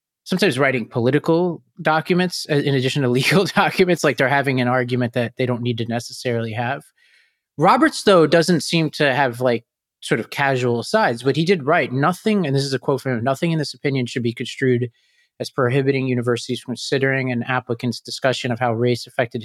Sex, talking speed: male, 195 wpm